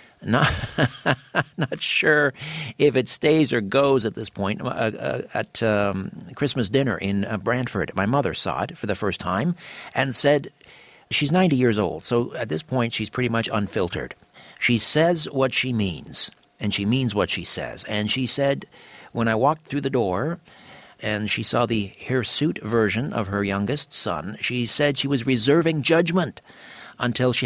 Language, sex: English, male